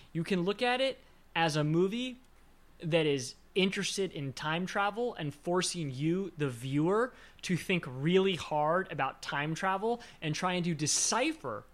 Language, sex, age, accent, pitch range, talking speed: English, male, 20-39, American, 145-190 Hz, 155 wpm